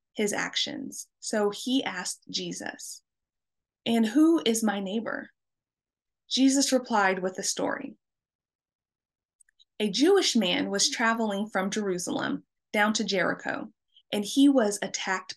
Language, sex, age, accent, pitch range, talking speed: English, female, 20-39, American, 200-275 Hz, 115 wpm